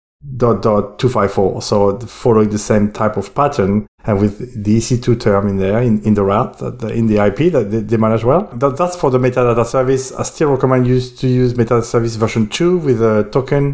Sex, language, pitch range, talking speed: male, English, 100-125 Hz, 215 wpm